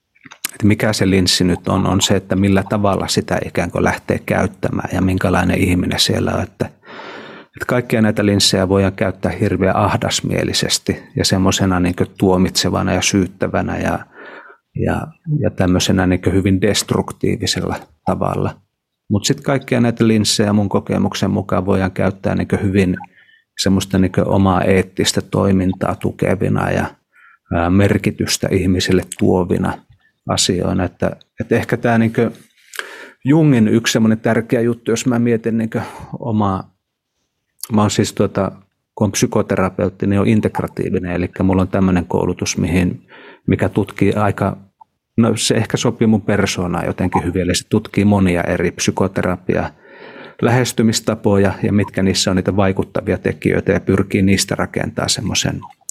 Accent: native